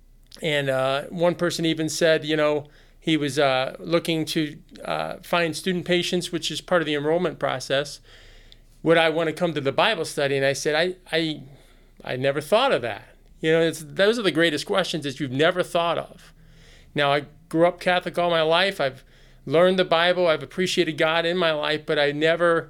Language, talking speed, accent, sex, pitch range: English, 205 wpm, American, male, 140-170 Hz